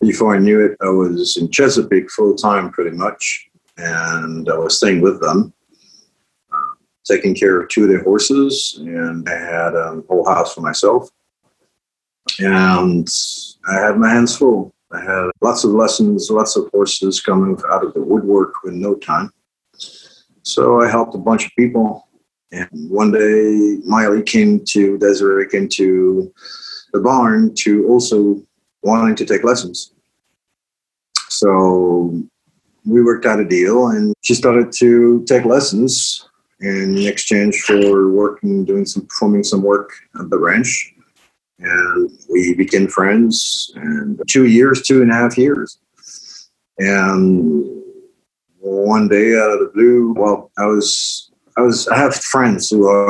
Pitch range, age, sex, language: 95-125 Hz, 50-69, male, English